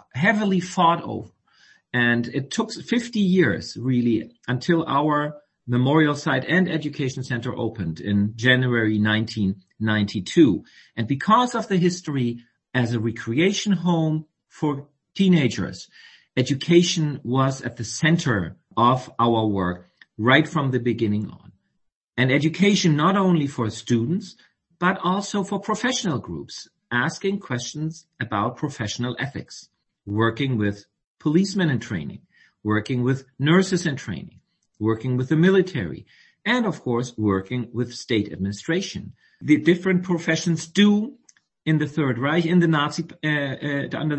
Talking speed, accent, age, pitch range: 130 wpm, German, 40-59, 120-175 Hz